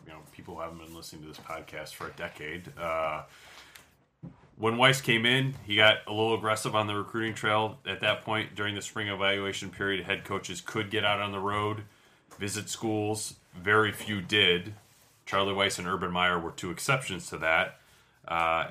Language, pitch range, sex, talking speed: English, 90-115 Hz, male, 190 wpm